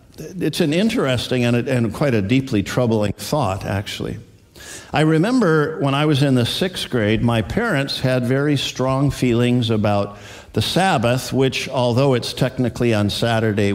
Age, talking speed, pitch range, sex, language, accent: 50-69, 155 wpm, 105-140 Hz, male, English, American